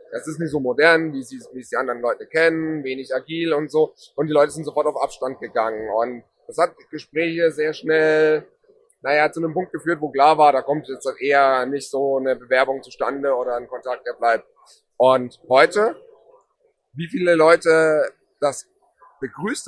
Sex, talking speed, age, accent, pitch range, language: male, 185 wpm, 30-49, German, 135-165 Hz, German